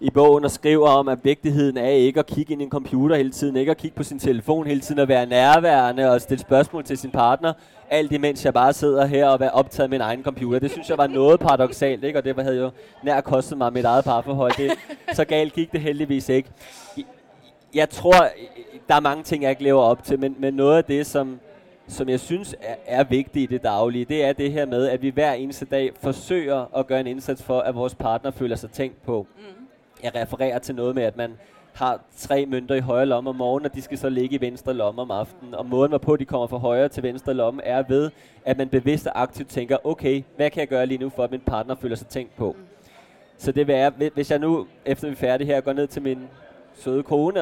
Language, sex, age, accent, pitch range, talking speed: Danish, male, 20-39, native, 130-150 Hz, 250 wpm